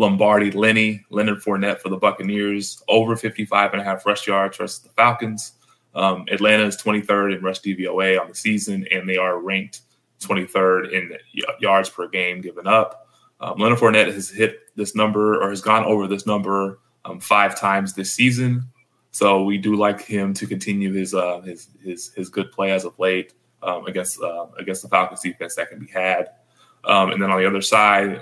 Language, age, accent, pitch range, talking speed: English, 20-39, American, 95-105 Hz, 195 wpm